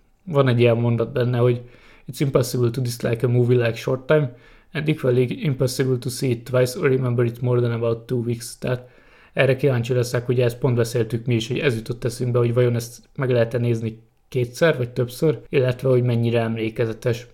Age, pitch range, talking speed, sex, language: 20-39, 115-130 Hz, 195 wpm, male, Hungarian